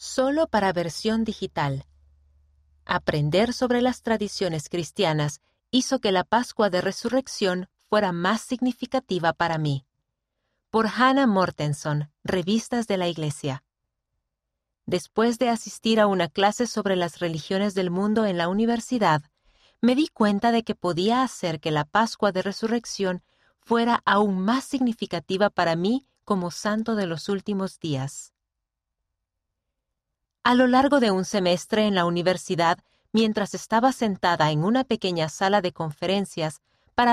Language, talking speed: Spanish, 135 wpm